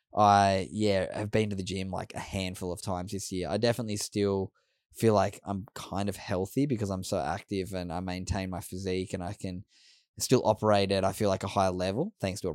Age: 10-29